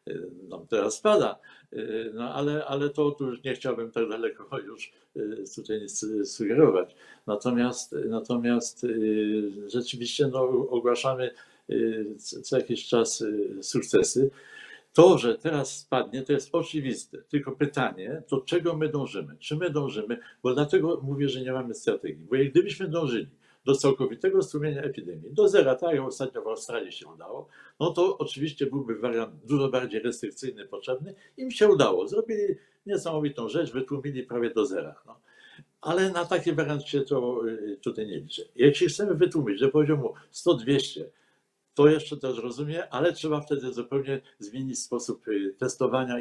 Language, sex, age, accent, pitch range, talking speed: Polish, male, 60-79, native, 125-170 Hz, 145 wpm